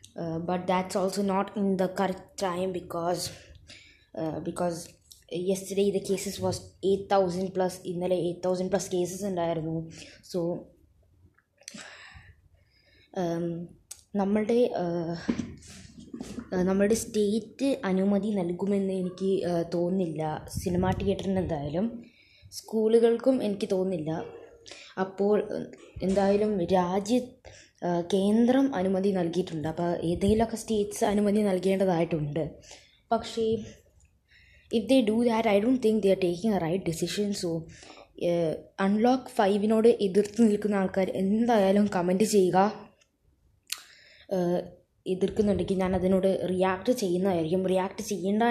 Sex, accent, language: female, native, Malayalam